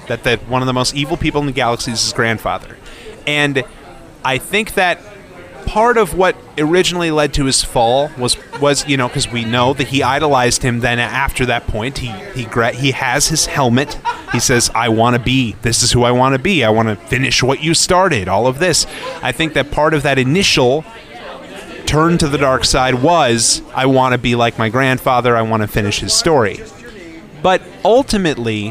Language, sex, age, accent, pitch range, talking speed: English, male, 30-49, American, 120-160 Hz, 205 wpm